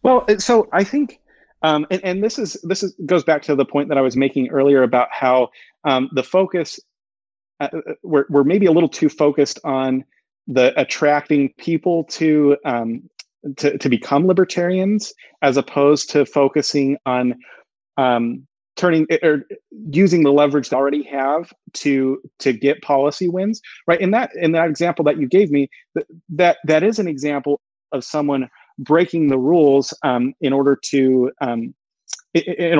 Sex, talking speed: male, 165 wpm